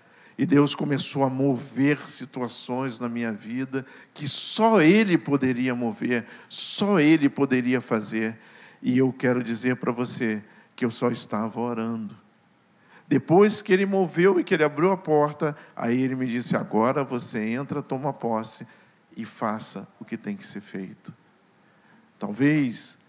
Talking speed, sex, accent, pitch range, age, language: 150 wpm, male, Brazilian, 125-180 Hz, 50-69, Portuguese